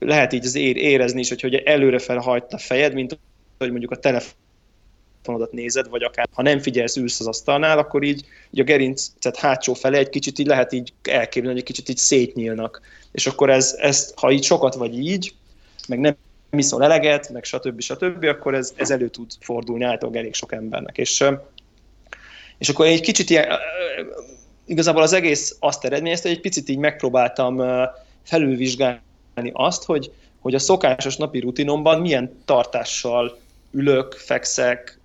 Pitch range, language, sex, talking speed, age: 120-150 Hz, Hungarian, male, 165 wpm, 20-39